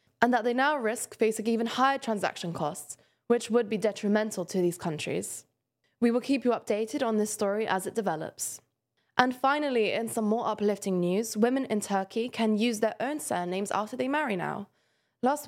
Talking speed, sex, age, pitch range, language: 185 wpm, female, 20-39, 190-235 Hz, English